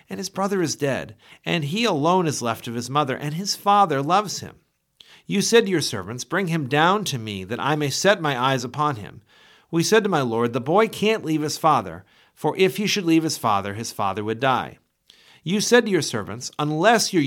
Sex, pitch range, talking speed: male, 120-180 Hz, 225 wpm